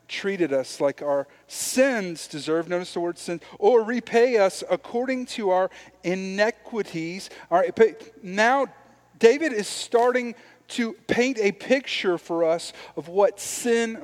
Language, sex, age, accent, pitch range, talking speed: English, male, 40-59, American, 145-215 Hz, 135 wpm